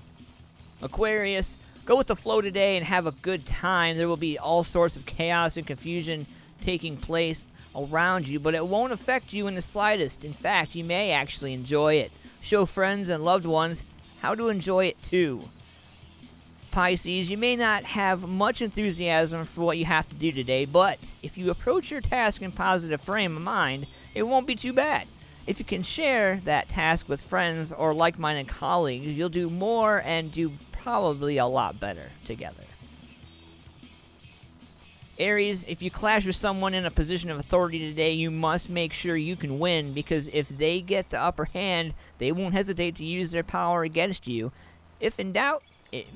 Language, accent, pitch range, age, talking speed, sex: English, American, 155-195 Hz, 40-59, 180 wpm, male